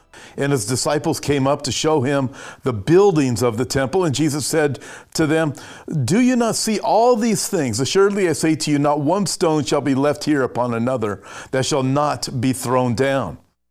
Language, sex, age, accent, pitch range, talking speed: English, male, 50-69, American, 130-170 Hz, 195 wpm